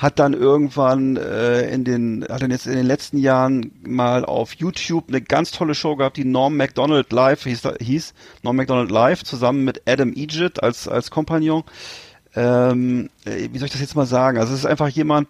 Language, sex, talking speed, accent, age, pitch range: German, male, 195 wpm, German, 40-59, 130-160 Hz